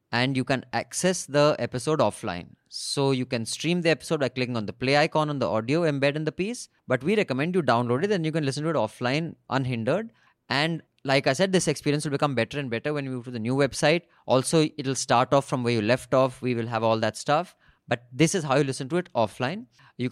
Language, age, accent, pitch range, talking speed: English, 20-39, Indian, 120-150 Hz, 250 wpm